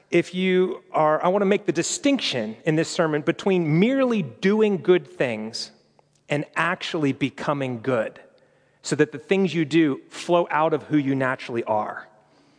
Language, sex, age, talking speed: English, male, 40-59, 160 wpm